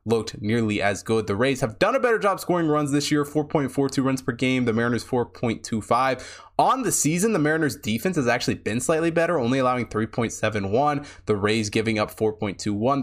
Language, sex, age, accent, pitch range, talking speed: English, male, 20-39, American, 110-140 Hz, 190 wpm